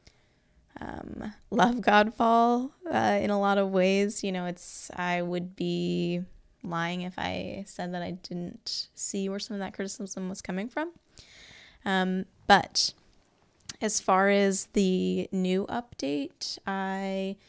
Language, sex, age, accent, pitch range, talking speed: English, female, 20-39, American, 175-195 Hz, 135 wpm